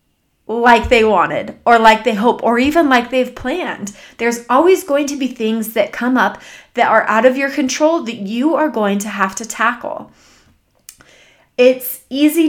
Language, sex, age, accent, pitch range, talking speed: English, female, 20-39, American, 225-285 Hz, 180 wpm